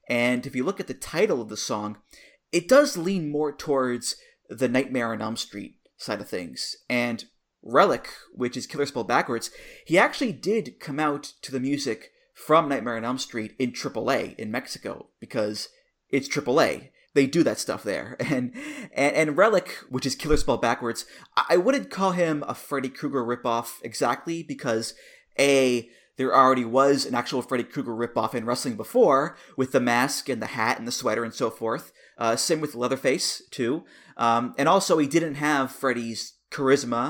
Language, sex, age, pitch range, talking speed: English, male, 20-39, 120-155 Hz, 180 wpm